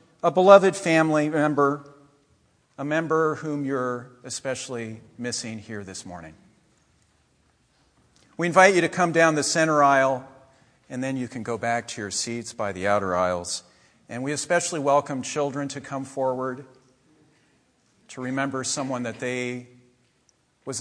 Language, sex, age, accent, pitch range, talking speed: English, male, 50-69, American, 120-160 Hz, 140 wpm